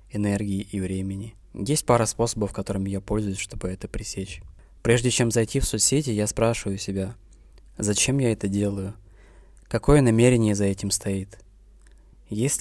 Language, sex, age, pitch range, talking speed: Russian, male, 20-39, 100-110 Hz, 145 wpm